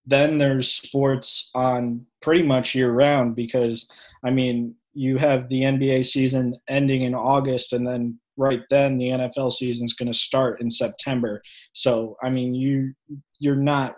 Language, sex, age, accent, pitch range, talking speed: English, male, 20-39, American, 115-135 Hz, 160 wpm